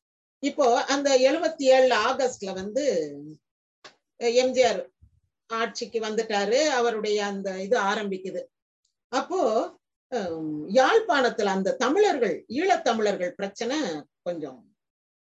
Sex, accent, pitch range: female, native, 205-275 Hz